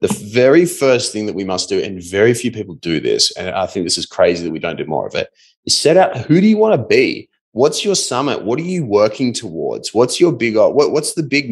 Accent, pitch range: Australian, 105-140 Hz